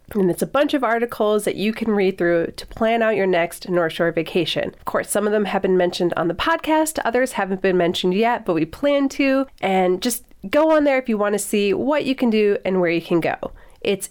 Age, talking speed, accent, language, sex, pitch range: 30-49, 250 wpm, American, English, female, 185-245 Hz